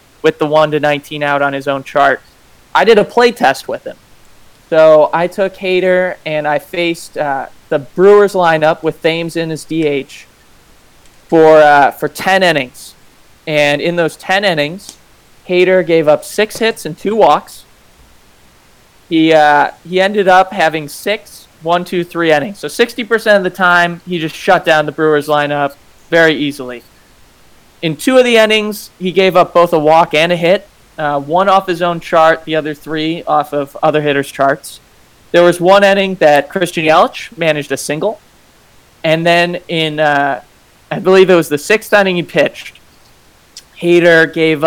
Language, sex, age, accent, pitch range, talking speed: English, male, 20-39, American, 150-180 Hz, 175 wpm